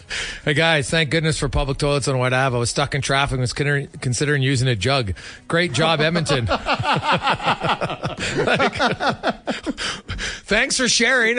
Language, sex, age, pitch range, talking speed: English, male, 40-59, 140-185 Hz, 155 wpm